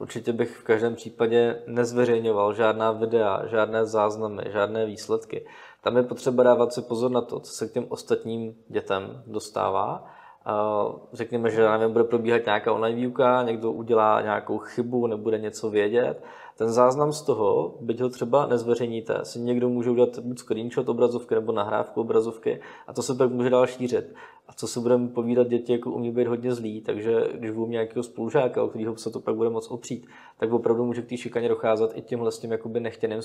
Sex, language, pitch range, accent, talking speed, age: male, Czech, 110-125 Hz, native, 185 wpm, 20-39